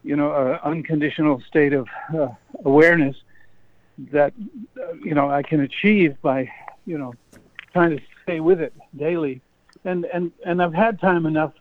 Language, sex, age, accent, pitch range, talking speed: English, male, 60-79, American, 145-175 Hz, 160 wpm